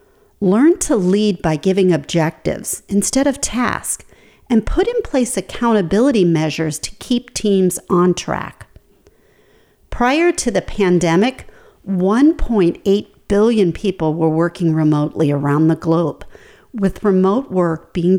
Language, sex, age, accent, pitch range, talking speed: English, female, 50-69, American, 175-250 Hz, 120 wpm